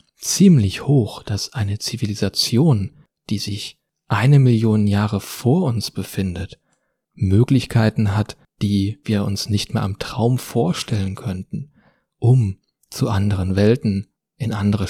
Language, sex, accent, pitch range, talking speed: German, male, German, 100-130 Hz, 120 wpm